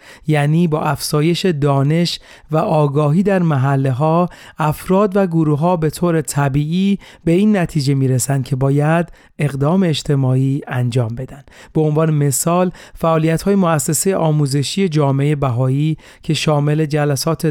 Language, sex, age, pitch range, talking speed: Persian, male, 40-59, 140-175 Hz, 135 wpm